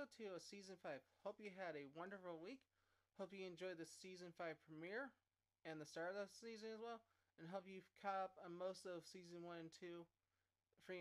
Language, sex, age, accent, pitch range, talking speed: English, male, 20-39, American, 150-185 Hz, 205 wpm